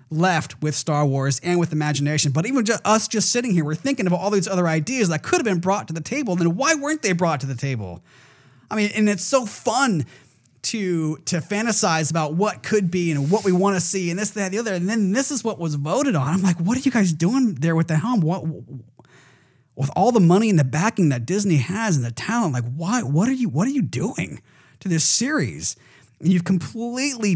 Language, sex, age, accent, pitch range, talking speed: English, male, 30-49, American, 150-200 Hz, 235 wpm